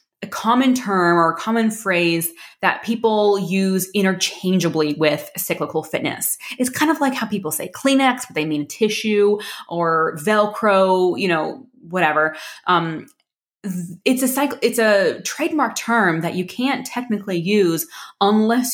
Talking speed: 145 wpm